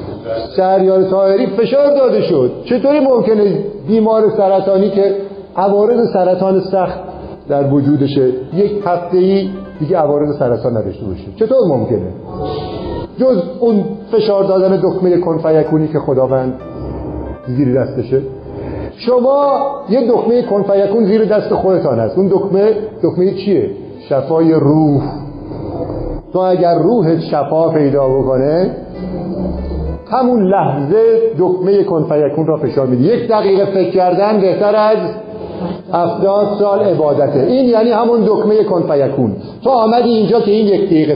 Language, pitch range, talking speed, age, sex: Persian, 150-210 Hz, 120 wpm, 50-69, male